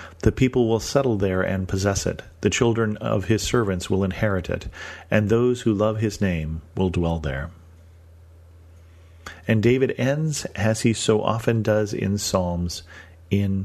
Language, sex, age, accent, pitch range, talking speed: English, male, 40-59, American, 85-110 Hz, 160 wpm